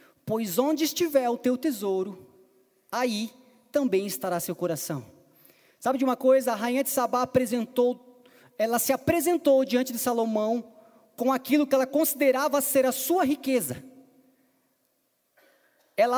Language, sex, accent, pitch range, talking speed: Portuguese, male, Brazilian, 215-280 Hz, 135 wpm